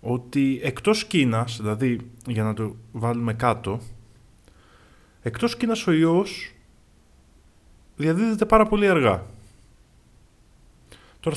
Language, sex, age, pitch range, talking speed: Greek, male, 20-39, 110-170 Hz, 95 wpm